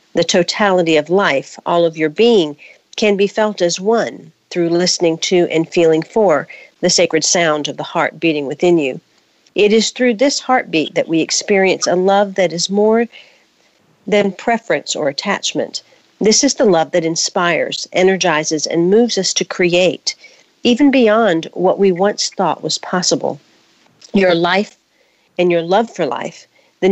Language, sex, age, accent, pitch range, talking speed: English, female, 50-69, American, 165-215 Hz, 165 wpm